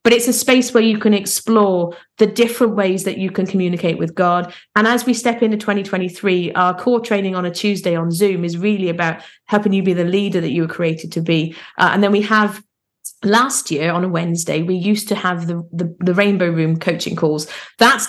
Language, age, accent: English, 30-49, British